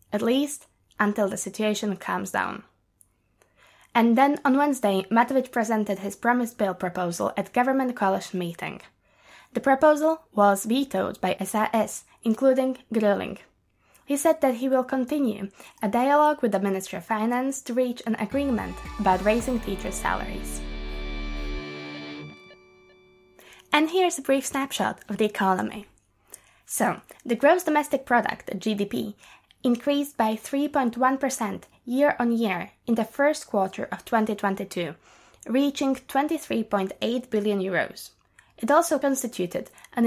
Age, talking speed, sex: 20-39, 125 wpm, female